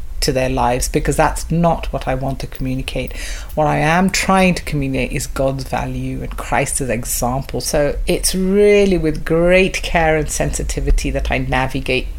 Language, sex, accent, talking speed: English, female, British, 165 wpm